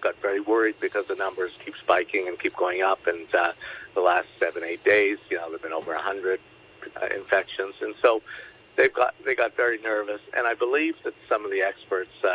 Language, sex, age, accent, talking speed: English, male, 50-69, American, 220 wpm